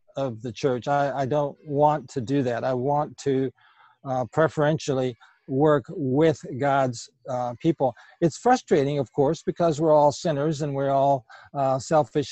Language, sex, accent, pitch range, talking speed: English, male, American, 135-160 Hz, 160 wpm